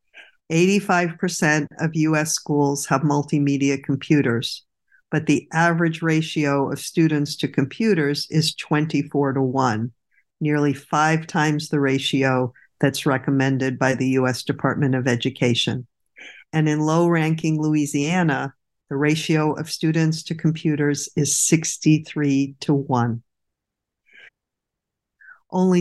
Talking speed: 105 wpm